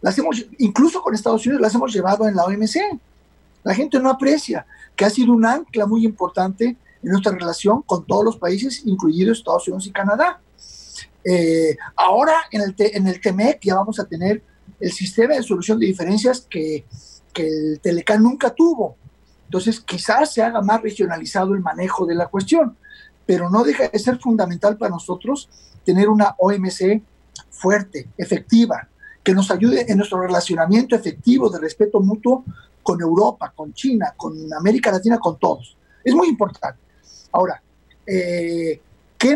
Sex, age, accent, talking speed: male, 50-69, Mexican, 165 wpm